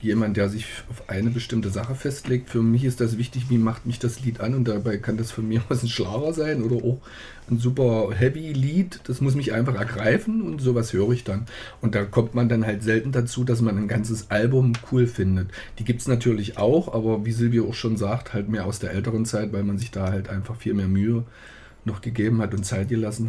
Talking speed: 235 wpm